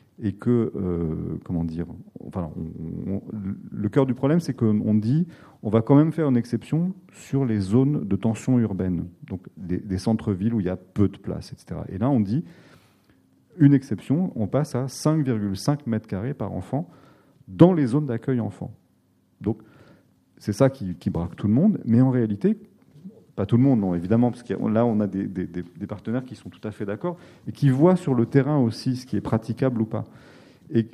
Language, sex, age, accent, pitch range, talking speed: French, male, 40-59, French, 100-135 Hz, 205 wpm